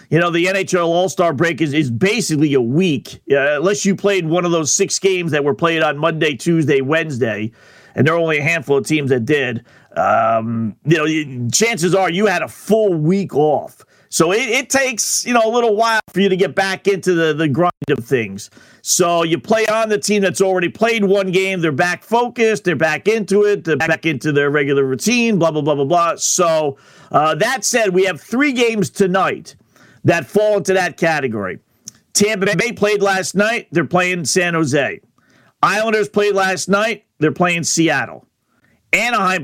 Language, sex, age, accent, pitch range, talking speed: English, male, 40-59, American, 155-205 Hz, 195 wpm